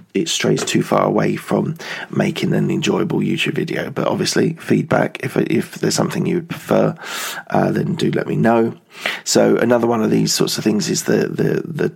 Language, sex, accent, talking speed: English, male, British, 185 wpm